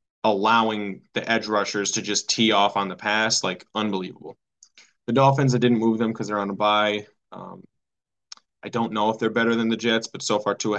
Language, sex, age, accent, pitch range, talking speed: English, male, 10-29, American, 105-125 Hz, 210 wpm